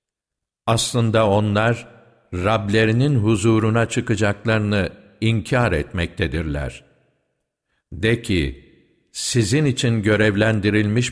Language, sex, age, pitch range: Turkish, male, 60-79, 100-120 Hz